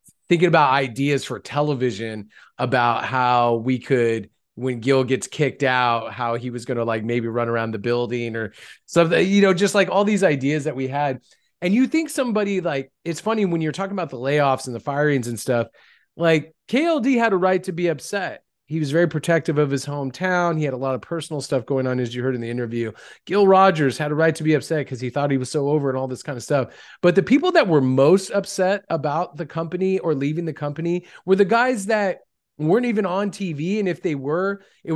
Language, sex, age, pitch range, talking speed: English, male, 30-49, 140-195 Hz, 230 wpm